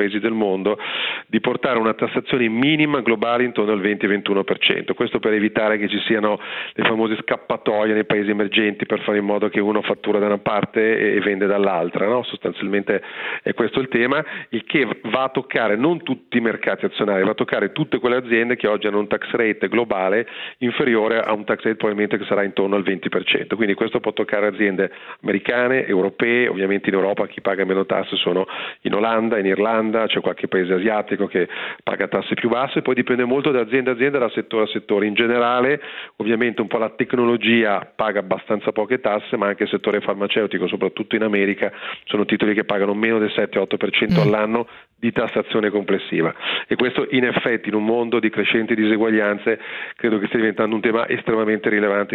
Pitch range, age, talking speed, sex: 105-115 Hz, 40-59, 190 wpm, male